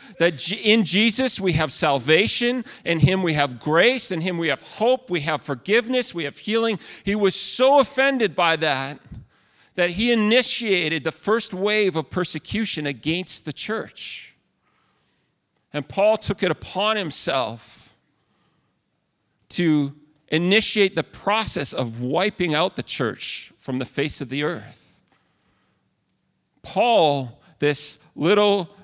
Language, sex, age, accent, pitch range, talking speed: English, male, 40-59, American, 130-185 Hz, 130 wpm